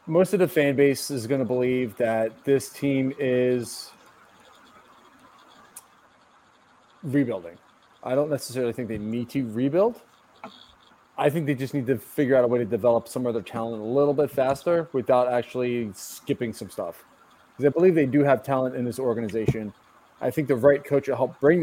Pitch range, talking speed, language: 125-150 Hz, 180 wpm, English